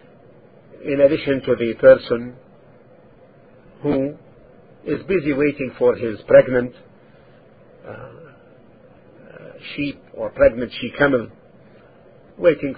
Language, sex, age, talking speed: English, male, 50-69, 85 wpm